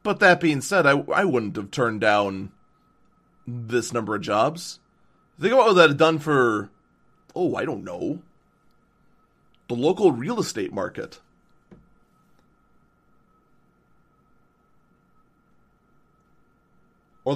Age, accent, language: 30-49, American, English